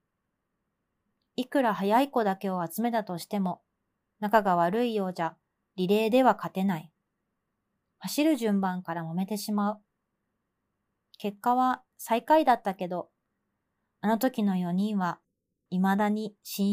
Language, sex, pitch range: Japanese, female, 175-235 Hz